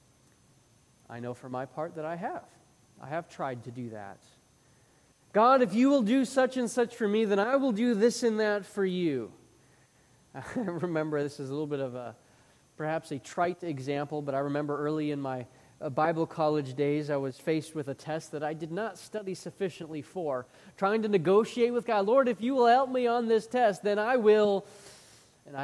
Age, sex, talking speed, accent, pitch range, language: 30-49, male, 200 wpm, American, 140-205 Hz, English